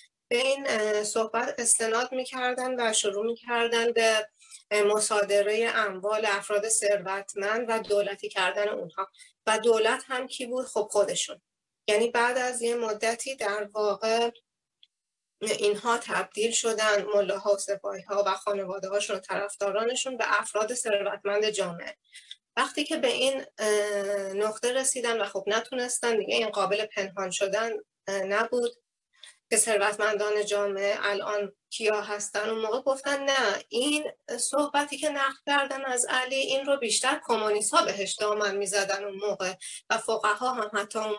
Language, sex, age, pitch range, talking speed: Persian, female, 30-49, 205-250 Hz, 140 wpm